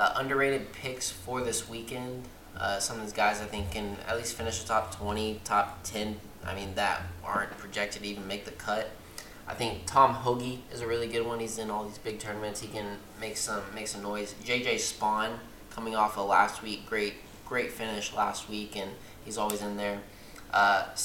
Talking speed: 205 wpm